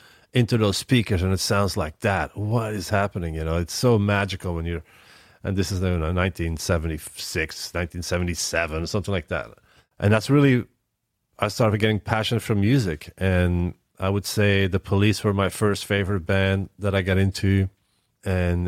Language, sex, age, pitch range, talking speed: English, male, 30-49, 90-105 Hz, 165 wpm